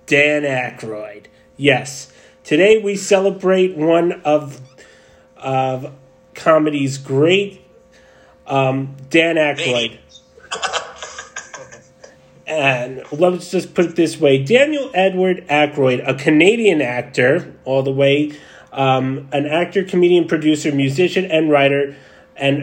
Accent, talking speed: American, 105 wpm